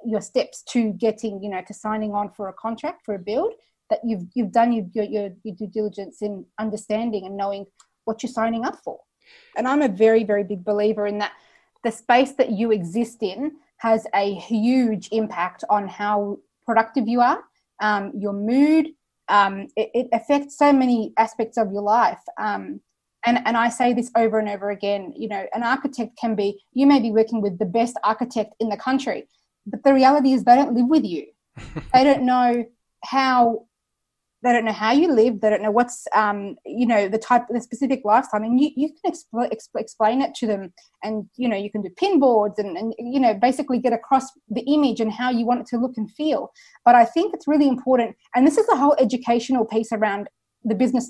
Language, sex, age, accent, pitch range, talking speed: English, female, 20-39, Australian, 215-255 Hz, 215 wpm